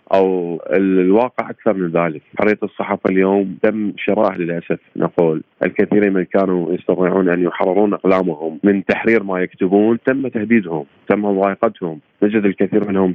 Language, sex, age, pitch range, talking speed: Arabic, male, 30-49, 90-105 Hz, 135 wpm